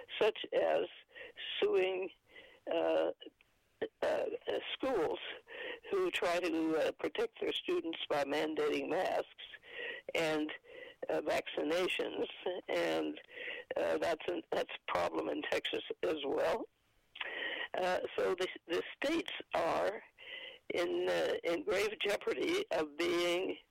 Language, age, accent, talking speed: English, 60-79, American, 110 wpm